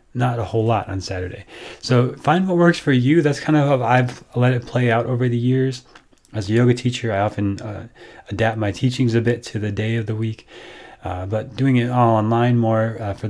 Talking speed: 230 wpm